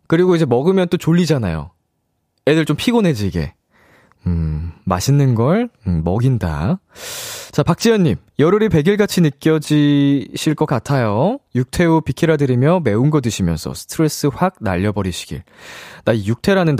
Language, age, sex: Korean, 20-39, male